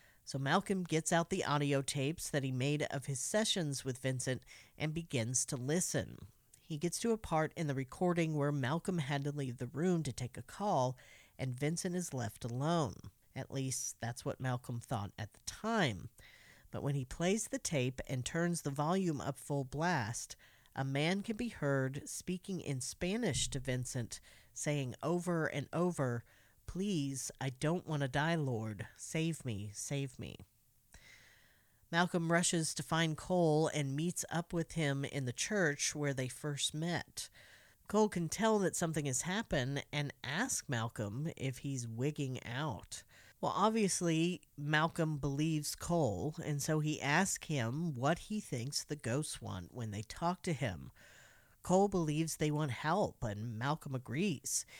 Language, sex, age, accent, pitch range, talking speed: English, female, 40-59, American, 130-170 Hz, 165 wpm